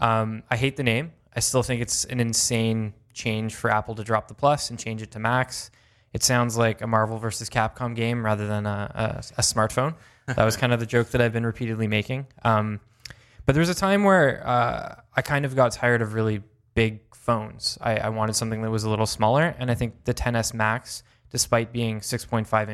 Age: 20-39